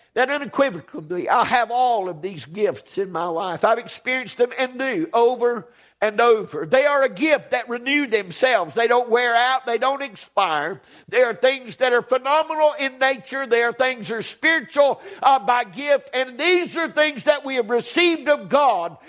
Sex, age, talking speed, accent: male, 60-79, 190 wpm, American